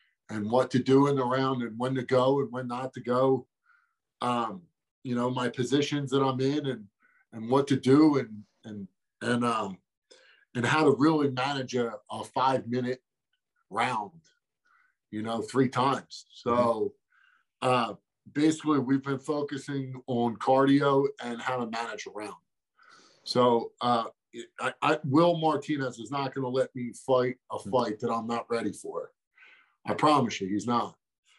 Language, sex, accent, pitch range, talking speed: English, male, American, 120-145 Hz, 165 wpm